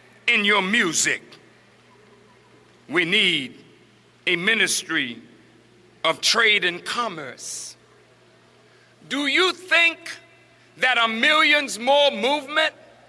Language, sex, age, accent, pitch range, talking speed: English, male, 60-79, American, 245-315 Hz, 85 wpm